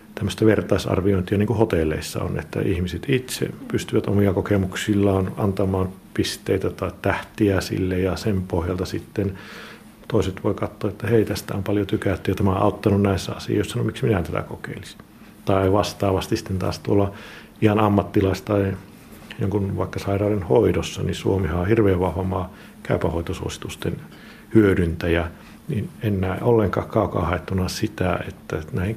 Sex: male